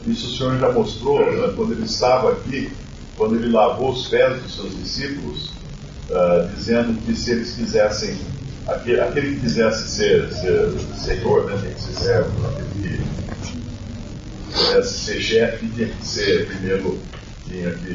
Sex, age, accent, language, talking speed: male, 50-69, Brazilian, Portuguese, 155 wpm